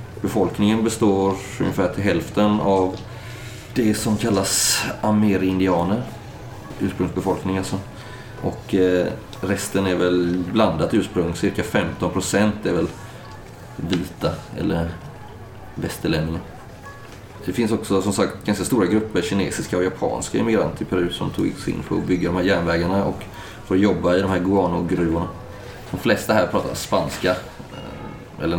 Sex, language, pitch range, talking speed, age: male, Swedish, 90-100 Hz, 130 wpm, 30-49